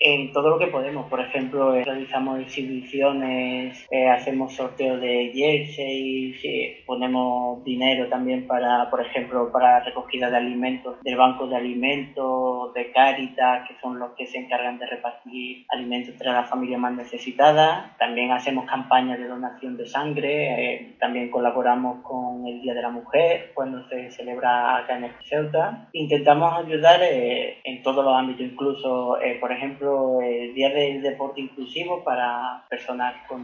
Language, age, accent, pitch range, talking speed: Spanish, 20-39, Spanish, 125-140 Hz, 160 wpm